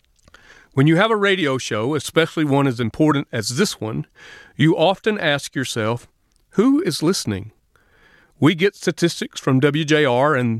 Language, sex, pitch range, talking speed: English, male, 130-170 Hz, 145 wpm